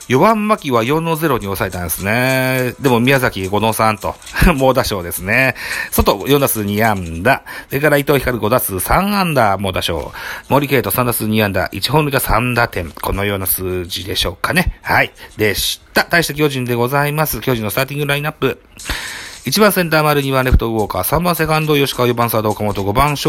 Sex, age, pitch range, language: male, 40-59, 105-150 Hz, Japanese